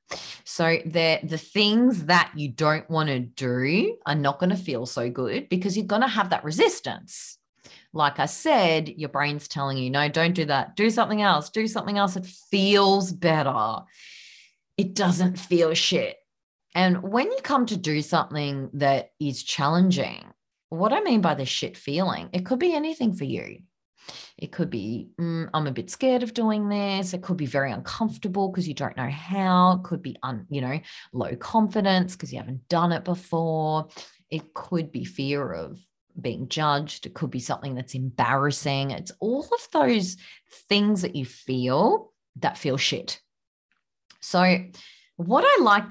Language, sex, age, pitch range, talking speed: English, female, 30-49, 145-200 Hz, 175 wpm